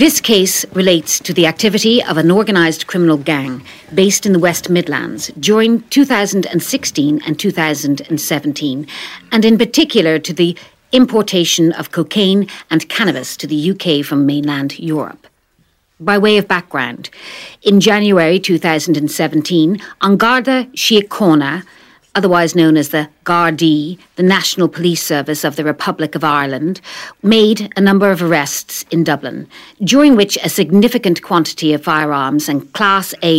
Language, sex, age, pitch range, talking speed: English, female, 50-69, 155-205 Hz, 135 wpm